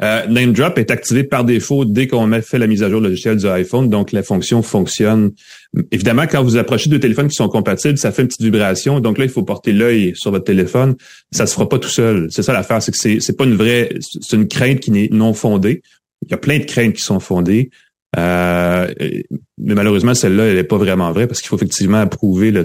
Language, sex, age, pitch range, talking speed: French, male, 30-49, 100-130 Hz, 245 wpm